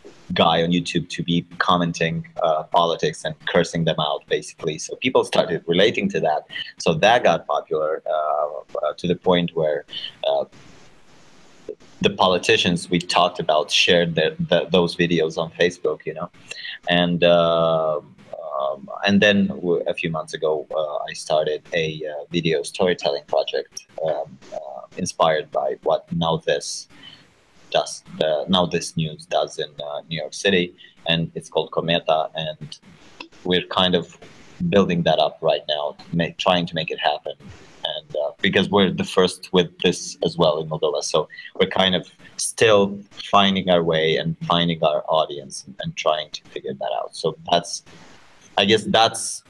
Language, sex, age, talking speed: English, male, 30-49, 160 wpm